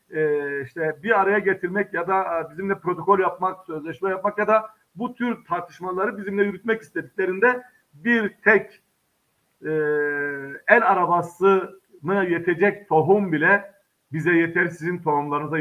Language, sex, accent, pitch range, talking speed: Turkish, male, native, 155-210 Hz, 125 wpm